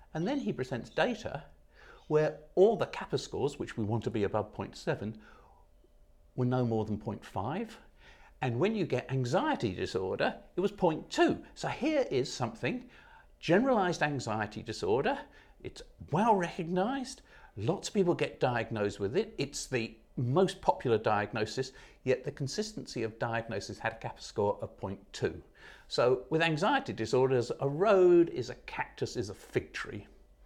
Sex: male